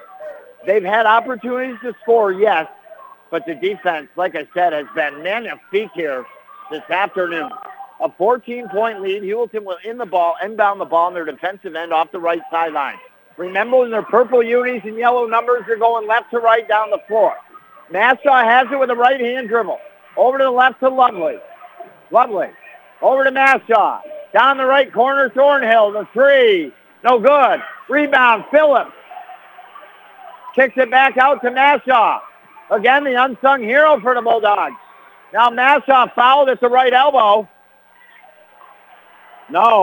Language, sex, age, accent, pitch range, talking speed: English, male, 50-69, American, 195-275 Hz, 155 wpm